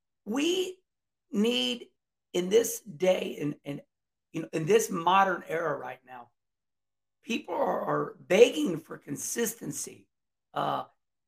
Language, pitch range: English, 180-240 Hz